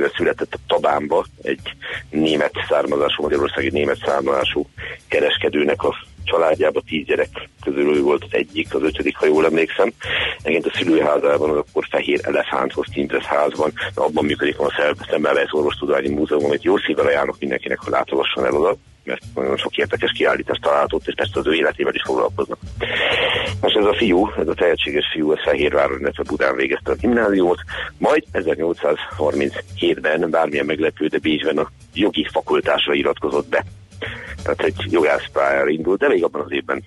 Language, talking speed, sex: Hungarian, 155 wpm, male